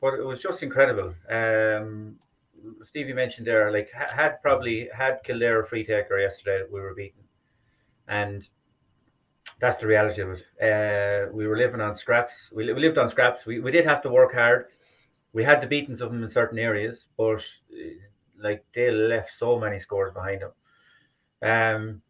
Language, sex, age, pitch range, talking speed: English, male, 30-49, 105-120 Hz, 175 wpm